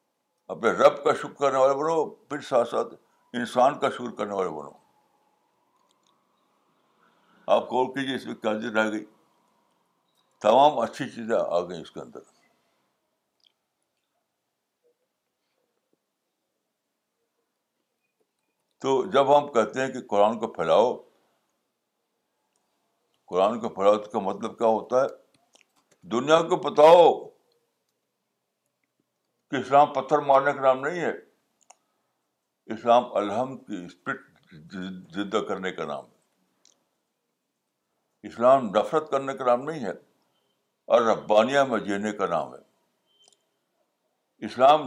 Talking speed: 110 wpm